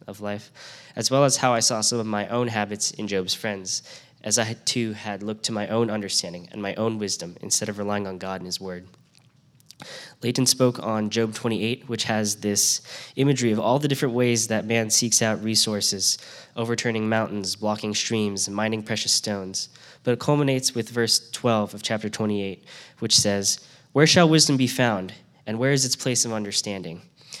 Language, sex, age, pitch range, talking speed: English, male, 10-29, 105-120 Hz, 190 wpm